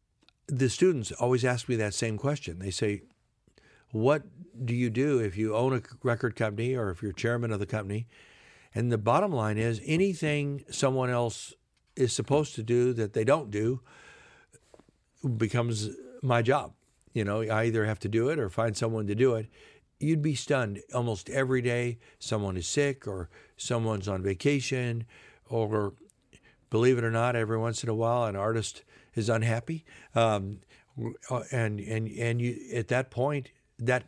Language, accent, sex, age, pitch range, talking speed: English, American, male, 60-79, 105-130 Hz, 170 wpm